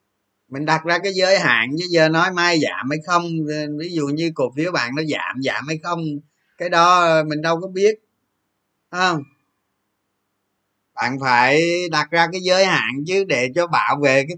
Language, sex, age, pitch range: Vietnamese, male, 20-39, 125-180 Hz